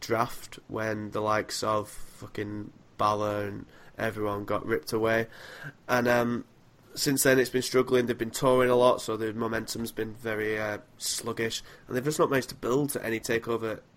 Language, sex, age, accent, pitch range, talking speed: English, male, 20-39, British, 115-130 Hz, 175 wpm